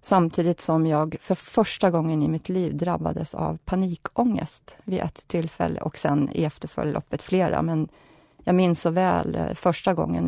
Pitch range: 145-180 Hz